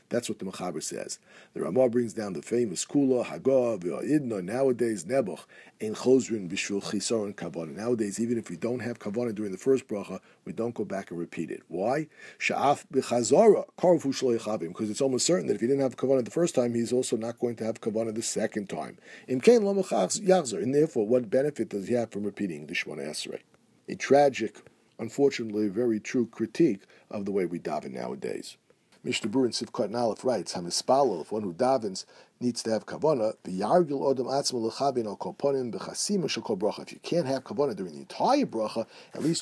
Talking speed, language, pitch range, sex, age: 190 wpm, English, 115-140 Hz, male, 50-69